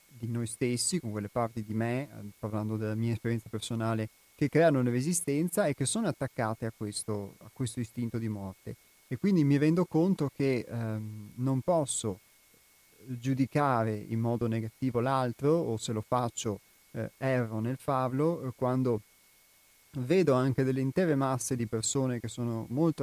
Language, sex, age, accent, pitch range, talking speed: Italian, male, 30-49, native, 115-145 Hz, 155 wpm